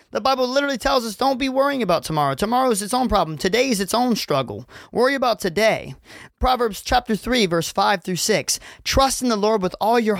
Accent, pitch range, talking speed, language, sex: American, 145-205 Hz, 220 wpm, English, male